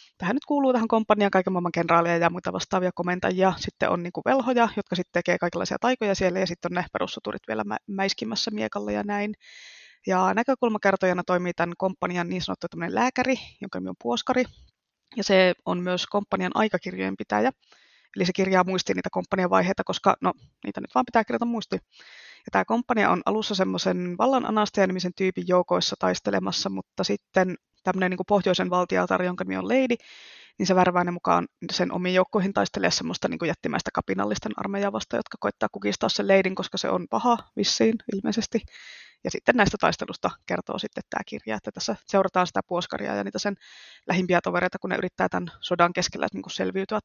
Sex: female